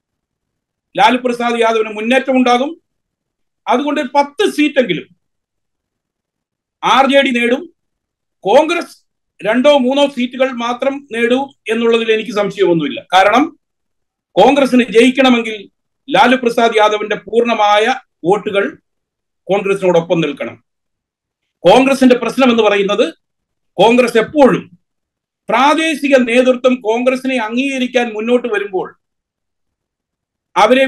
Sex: male